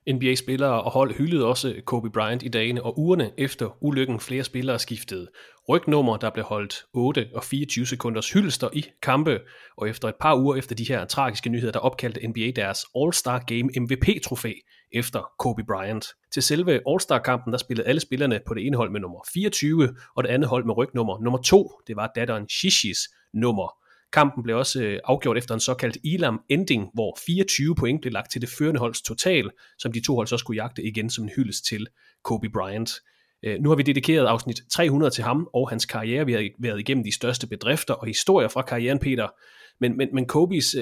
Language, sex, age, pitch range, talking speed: English, male, 30-49, 115-140 Hz, 195 wpm